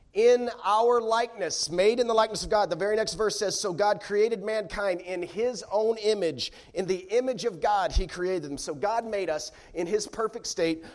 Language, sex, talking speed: English, male, 210 wpm